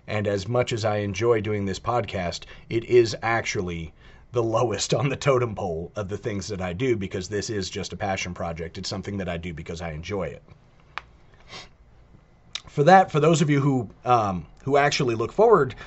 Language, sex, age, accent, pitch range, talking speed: English, male, 30-49, American, 90-115 Hz, 195 wpm